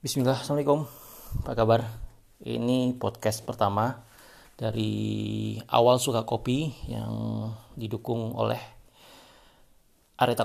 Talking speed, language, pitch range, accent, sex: 80 wpm, Indonesian, 110-125 Hz, native, male